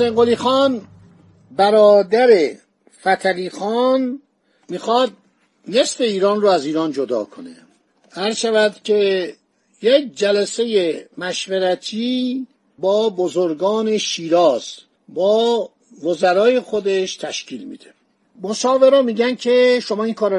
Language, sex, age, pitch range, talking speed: Persian, male, 60-79, 185-245 Hz, 95 wpm